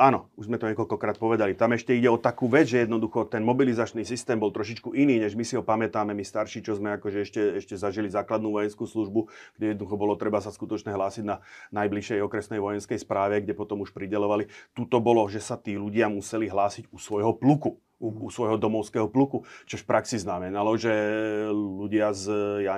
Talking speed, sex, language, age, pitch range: 200 wpm, male, Slovak, 30-49, 105-115 Hz